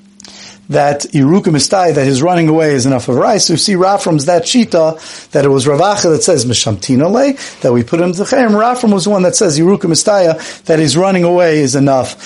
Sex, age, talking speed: male, 40-59, 205 wpm